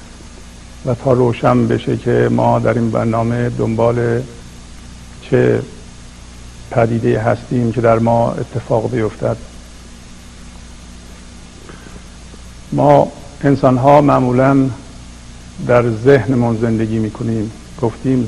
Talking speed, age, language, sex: 90 wpm, 50-69, Persian, male